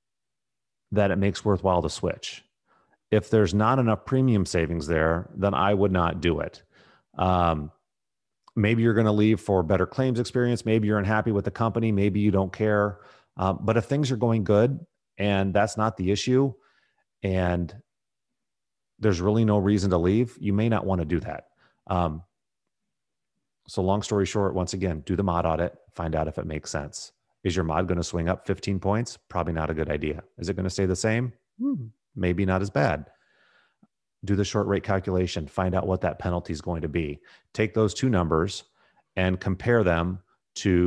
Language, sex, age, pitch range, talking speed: English, male, 30-49, 90-110 Hz, 185 wpm